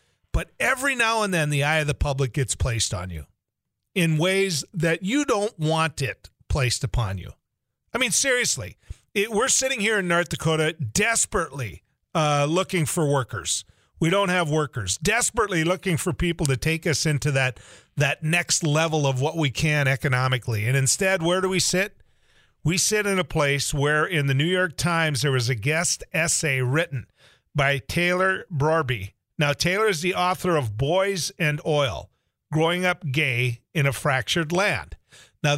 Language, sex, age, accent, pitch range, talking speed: English, male, 40-59, American, 140-185 Hz, 175 wpm